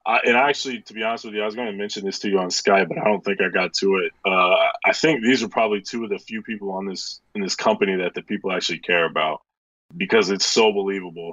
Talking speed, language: 275 wpm, English